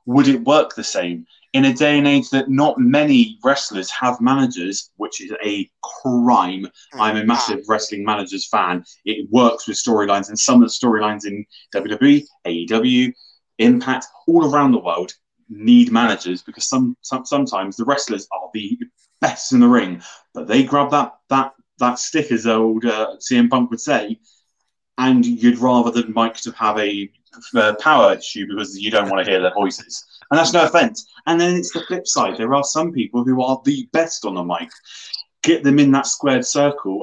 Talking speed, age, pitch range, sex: 190 wpm, 20-39, 110-165 Hz, male